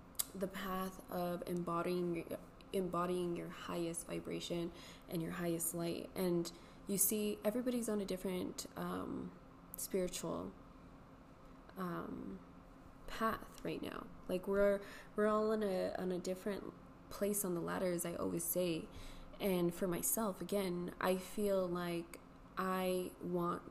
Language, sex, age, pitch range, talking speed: English, female, 20-39, 170-195 Hz, 135 wpm